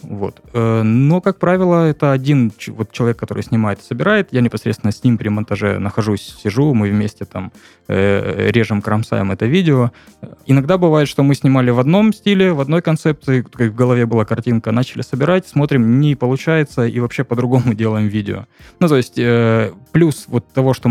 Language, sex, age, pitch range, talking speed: Russian, male, 20-39, 105-135 Hz, 165 wpm